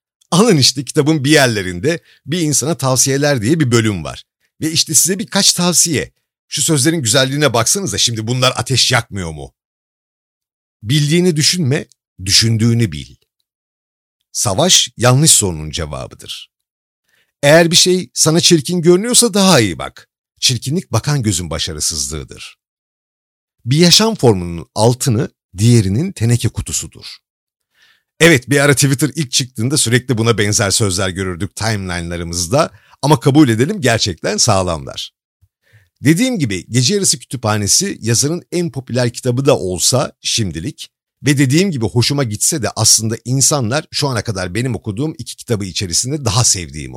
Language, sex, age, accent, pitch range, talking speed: Turkish, male, 50-69, native, 105-155 Hz, 130 wpm